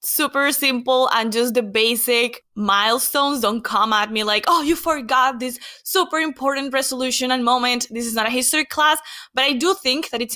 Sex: female